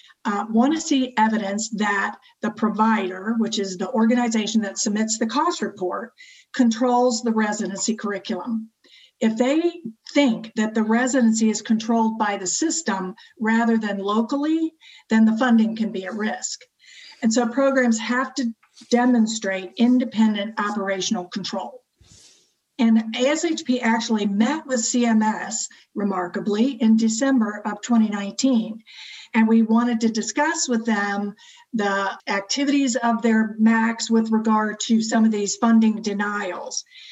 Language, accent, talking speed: English, American, 130 wpm